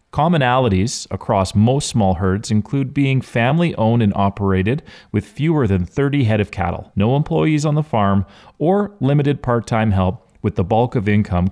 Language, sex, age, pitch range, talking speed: English, male, 30-49, 100-140 Hz, 160 wpm